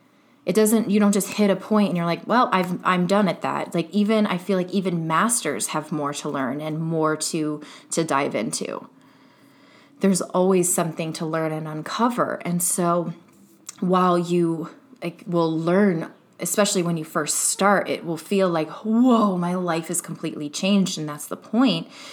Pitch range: 160-195 Hz